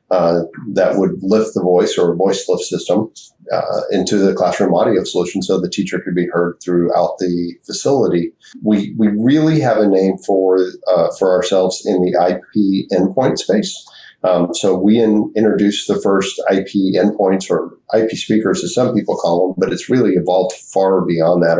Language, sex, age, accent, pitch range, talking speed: English, male, 40-59, American, 90-100 Hz, 180 wpm